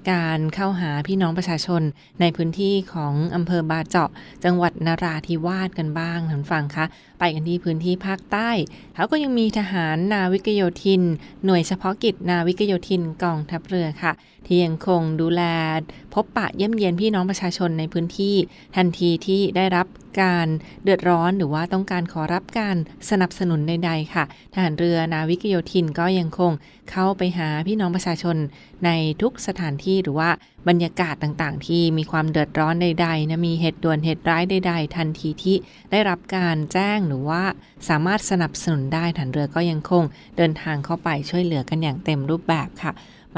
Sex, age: female, 20-39